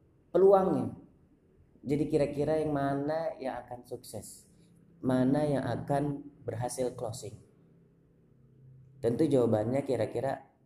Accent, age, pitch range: native, 30-49, 110-140 Hz